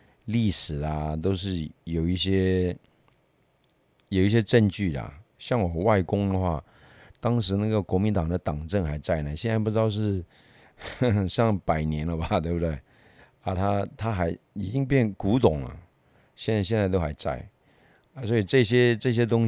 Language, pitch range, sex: Chinese, 80-105 Hz, male